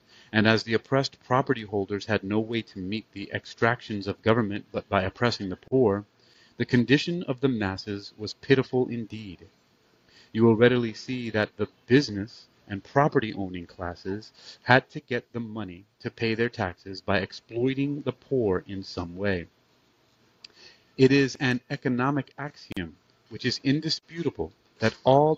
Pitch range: 100-130 Hz